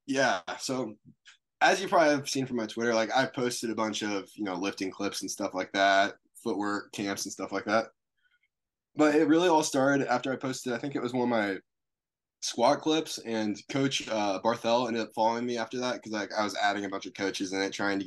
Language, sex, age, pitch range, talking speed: English, male, 10-29, 105-130 Hz, 235 wpm